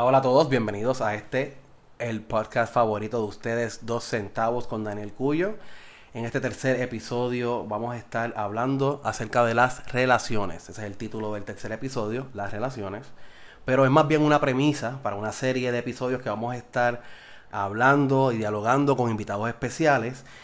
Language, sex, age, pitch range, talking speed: Spanish, male, 20-39, 110-130 Hz, 170 wpm